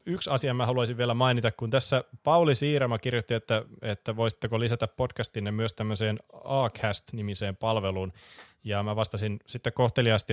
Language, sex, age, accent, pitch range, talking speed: Finnish, male, 20-39, native, 110-130 Hz, 145 wpm